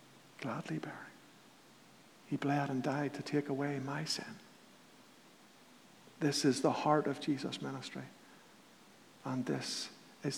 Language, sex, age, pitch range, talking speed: English, male, 50-69, 155-180 Hz, 120 wpm